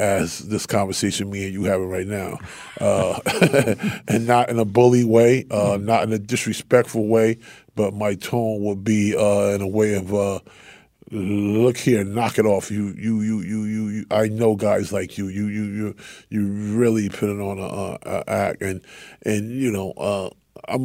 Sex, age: male, 20-39